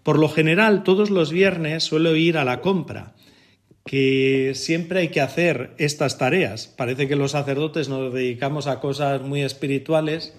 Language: Spanish